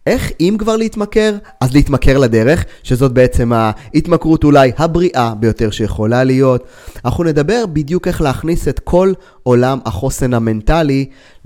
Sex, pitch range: male, 115-145 Hz